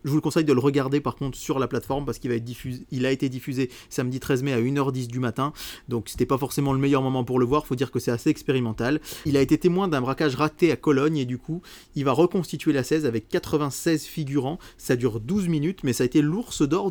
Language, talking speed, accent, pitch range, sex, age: French, 265 wpm, French, 120-155 Hz, male, 30-49